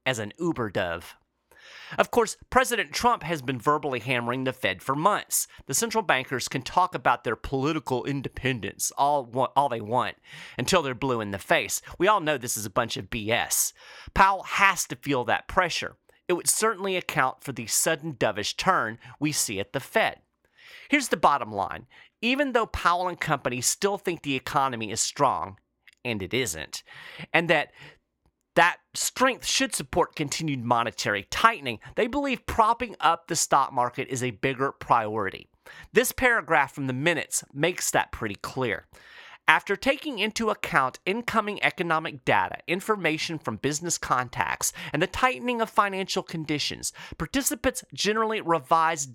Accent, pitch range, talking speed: American, 135-205 Hz, 160 wpm